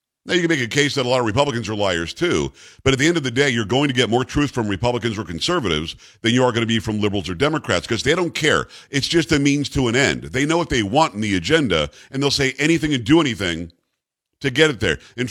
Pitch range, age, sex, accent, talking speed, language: 115-145 Hz, 50-69, male, American, 280 wpm, English